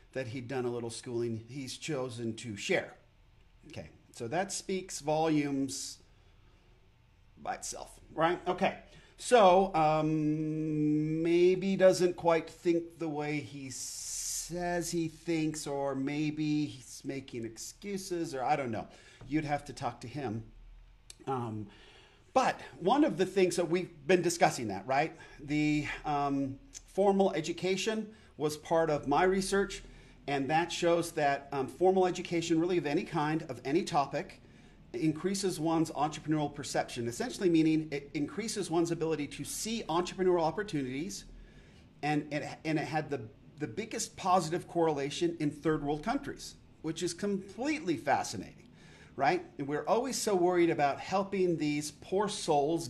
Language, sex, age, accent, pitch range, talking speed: English, male, 40-59, American, 135-180 Hz, 140 wpm